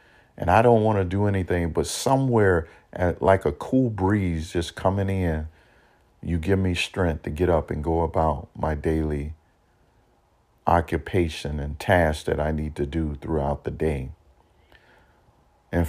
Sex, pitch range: male, 80-95 Hz